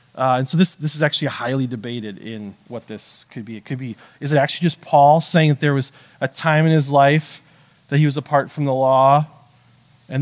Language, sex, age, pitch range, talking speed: English, male, 30-49, 130-165 Hz, 230 wpm